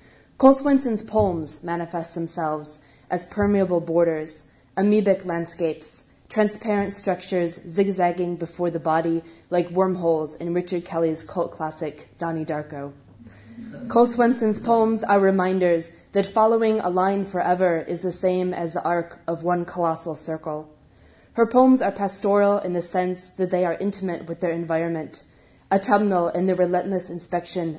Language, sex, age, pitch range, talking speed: English, female, 20-39, 165-195 Hz, 140 wpm